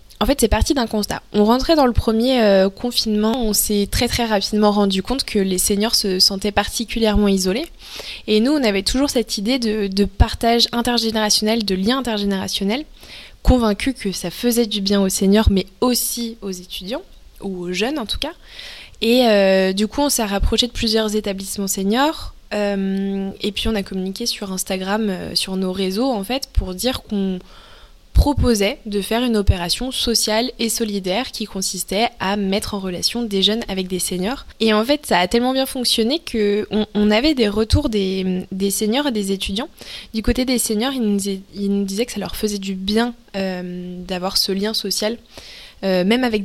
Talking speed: 185 wpm